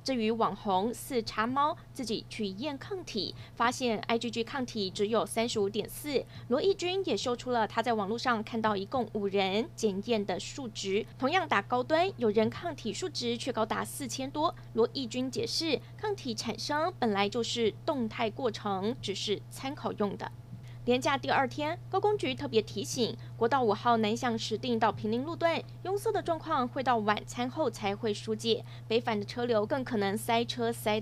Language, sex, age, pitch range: Chinese, female, 20-39, 200-250 Hz